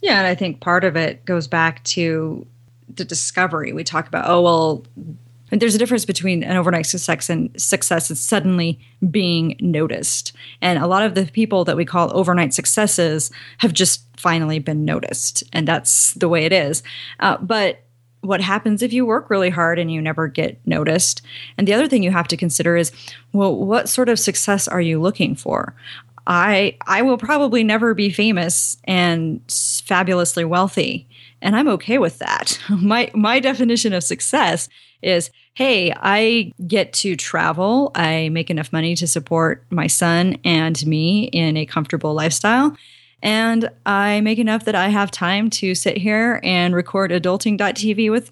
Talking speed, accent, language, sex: 175 wpm, American, English, female